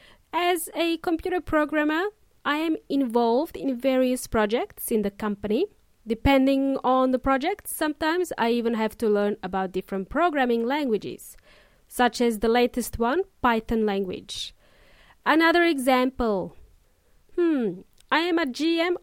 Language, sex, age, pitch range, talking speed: English, female, 30-49, 230-320 Hz, 130 wpm